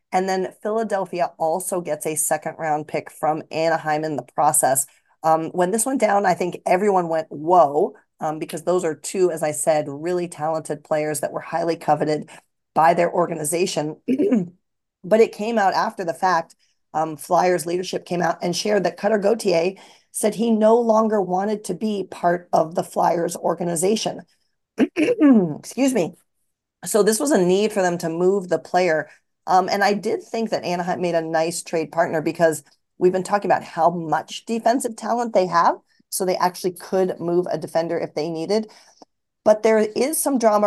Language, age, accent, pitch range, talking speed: English, 40-59, American, 160-205 Hz, 180 wpm